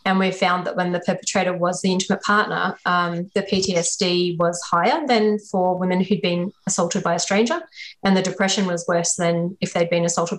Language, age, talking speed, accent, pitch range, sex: English, 20-39, 200 wpm, Australian, 175-200 Hz, female